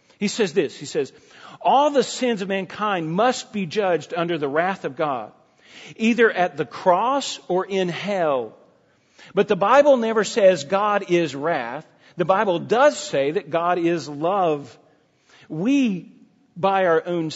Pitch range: 155-220 Hz